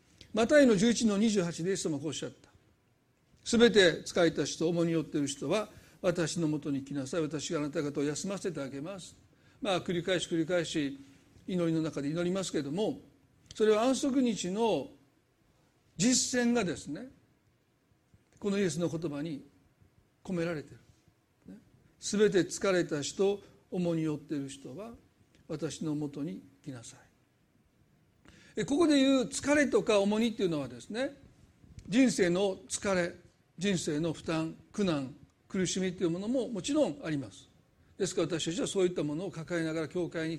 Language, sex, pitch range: Japanese, male, 150-210 Hz